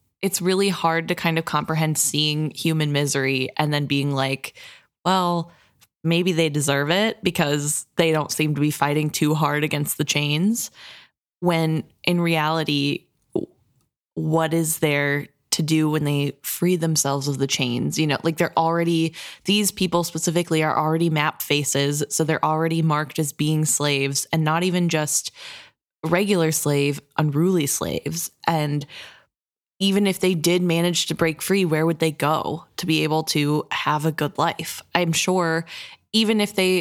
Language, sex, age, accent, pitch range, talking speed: English, female, 20-39, American, 150-180 Hz, 160 wpm